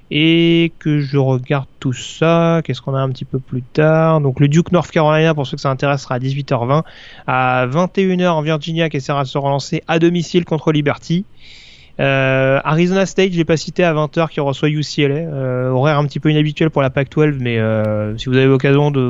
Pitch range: 135-170 Hz